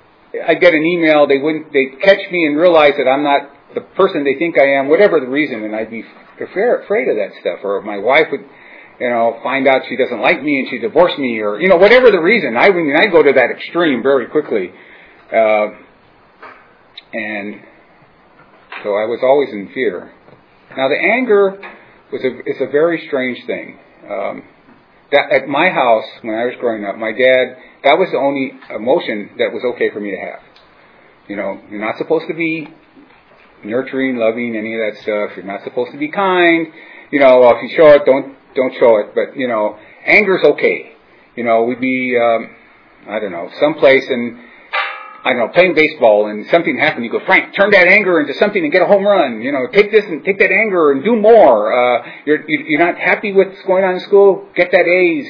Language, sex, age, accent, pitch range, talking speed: English, male, 40-59, American, 125-200 Hz, 215 wpm